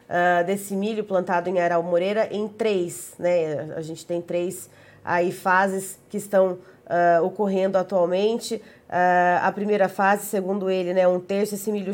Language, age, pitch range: Portuguese, 20-39, 180-225 Hz